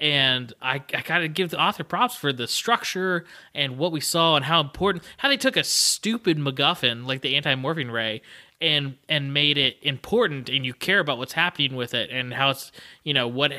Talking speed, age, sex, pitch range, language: 210 wpm, 20-39, male, 130-155 Hz, English